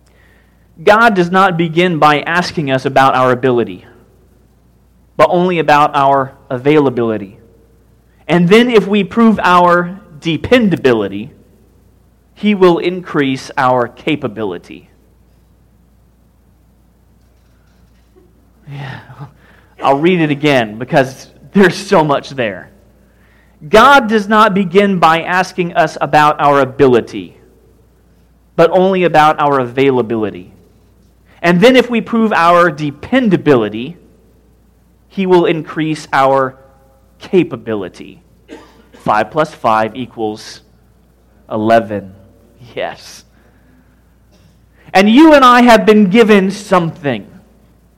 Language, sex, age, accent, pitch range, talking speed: English, male, 30-49, American, 125-195 Hz, 95 wpm